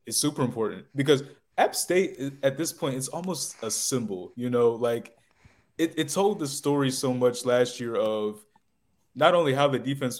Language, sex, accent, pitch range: English, male, American, 115-130 Hz